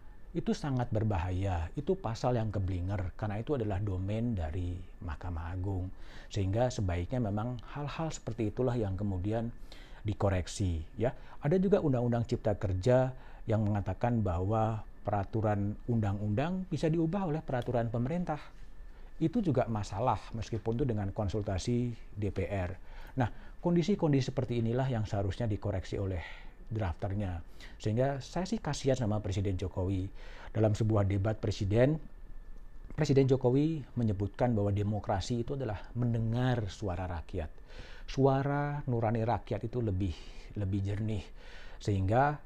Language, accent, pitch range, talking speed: Indonesian, native, 100-125 Hz, 120 wpm